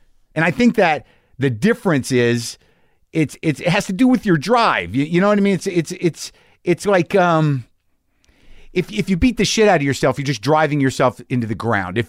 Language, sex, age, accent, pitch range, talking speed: English, male, 50-69, American, 135-195 Hz, 225 wpm